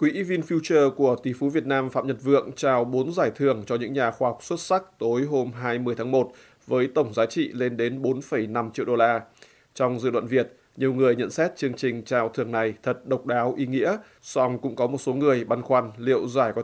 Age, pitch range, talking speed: 20-39, 120-130 Hz, 235 wpm